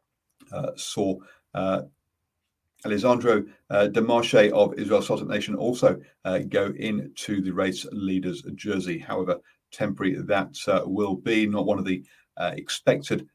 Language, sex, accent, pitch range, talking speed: English, male, British, 95-140 Hz, 135 wpm